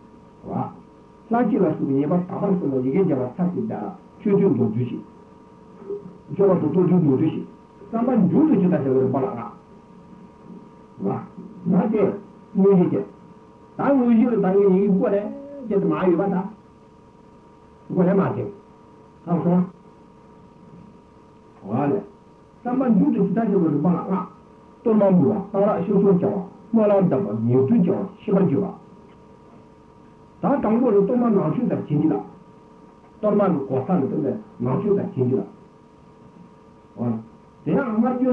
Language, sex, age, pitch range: Italian, male, 60-79, 170-210 Hz